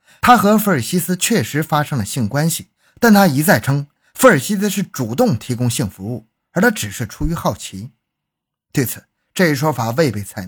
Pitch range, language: 115-160 Hz, Chinese